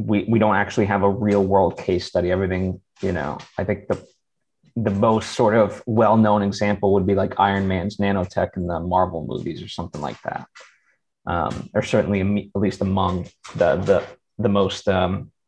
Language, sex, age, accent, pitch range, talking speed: English, male, 30-49, American, 100-120 Hz, 180 wpm